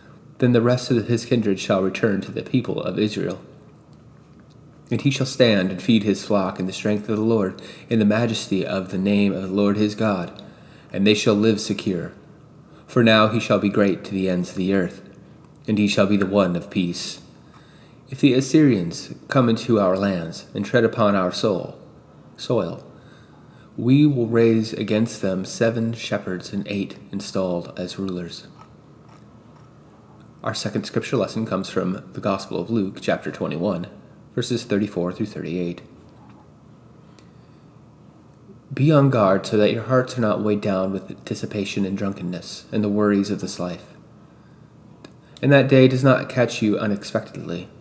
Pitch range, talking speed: 100-130 Hz, 165 wpm